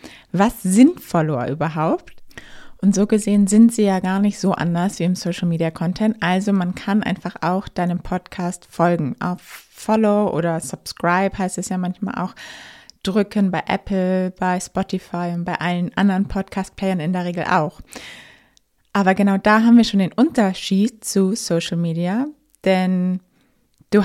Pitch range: 175-205 Hz